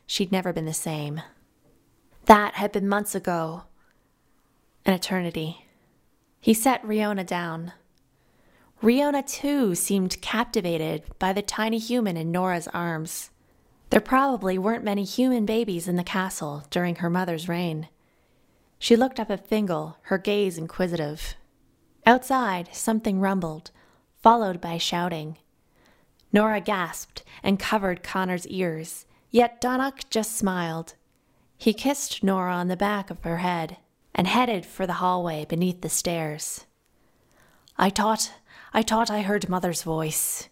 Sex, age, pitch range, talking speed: female, 20-39, 170-220 Hz, 130 wpm